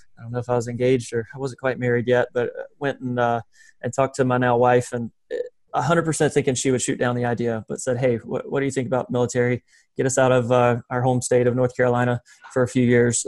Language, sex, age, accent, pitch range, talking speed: English, male, 20-39, American, 120-135 Hz, 260 wpm